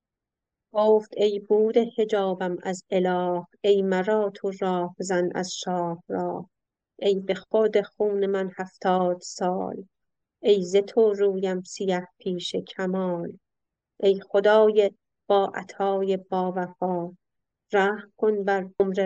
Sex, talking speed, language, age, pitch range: female, 110 wpm, Persian, 30-49, 185-205 Hz